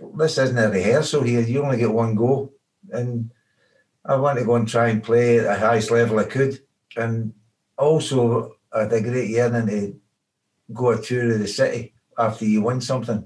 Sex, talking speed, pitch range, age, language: male, 195 wpm, 105-120 Hz, 60-79, English